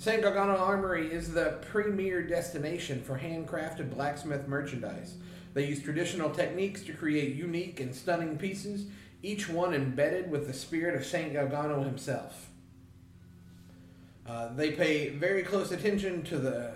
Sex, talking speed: male, 140 wpm